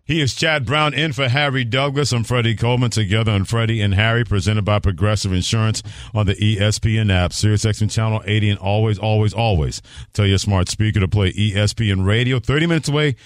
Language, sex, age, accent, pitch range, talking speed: English, male, 50-69, American, 100-115 Hz, 195 wpm